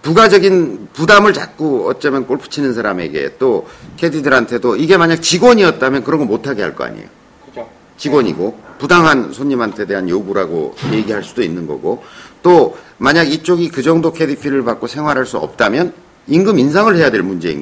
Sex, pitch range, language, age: male, 115-170 Hz, Korean, 50-69